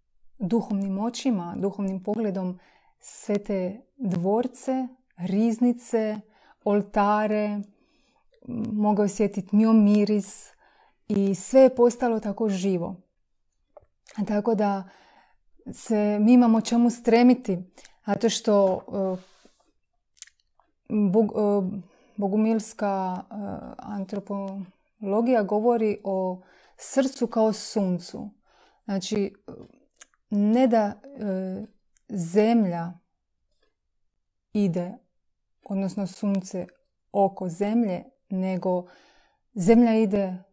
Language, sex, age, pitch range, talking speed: Croatian, female, 30-49, 195-230 Hz, 75 wpm